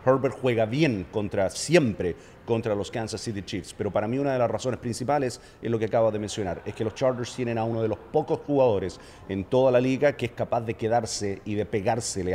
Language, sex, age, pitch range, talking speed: English, male, 50-69, 110-135 Hz, 230 wpm